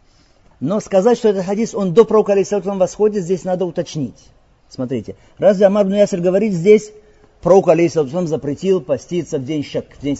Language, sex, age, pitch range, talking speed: Russian, male, 40-59, 155-210 Hz, 165 wpm